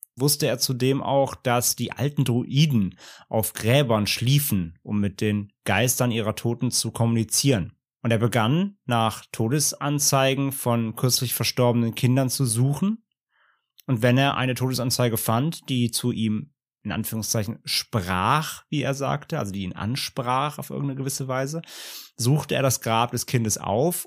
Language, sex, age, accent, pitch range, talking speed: German, male, 30-49, German, 110-135 Hz, 150 wpm